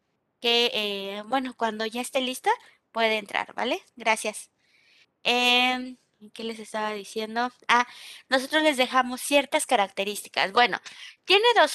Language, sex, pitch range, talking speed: Spanish, female, 225-295 Hz, 130 wpm